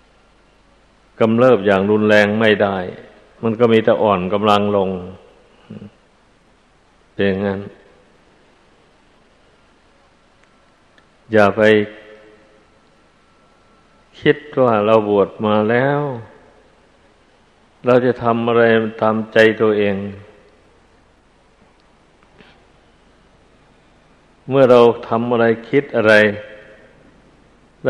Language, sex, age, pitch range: Thai, male, 60-79, 105-120 Hz